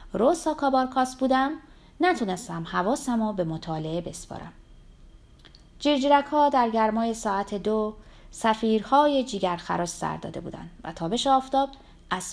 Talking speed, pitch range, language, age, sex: 100 wpm, 180-265 Hz, Persian, 30-49, female